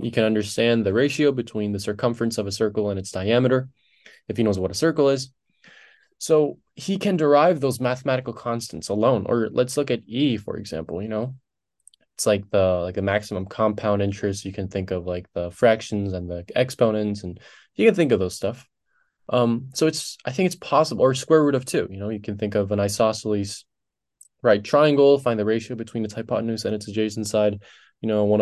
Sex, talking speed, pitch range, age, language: male, 205 wpm, 105-135 Hz, 20-39, English